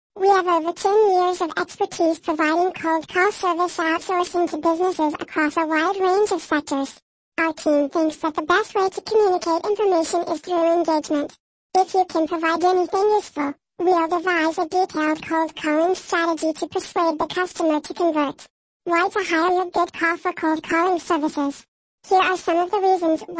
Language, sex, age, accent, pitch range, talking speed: English, male, 10-29, American, 320-365 Hz, 175 wpm